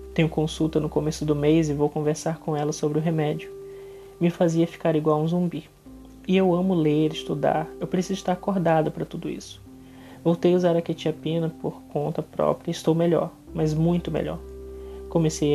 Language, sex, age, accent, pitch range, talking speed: Portuguese, male, 20-39, Brazilian, 145-170 Hz, 180 wpm